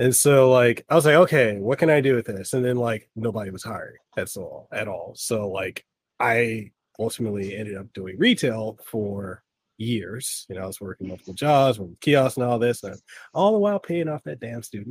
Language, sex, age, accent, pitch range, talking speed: English, male, 30-49, American, 105-125 Hz, 215 wpm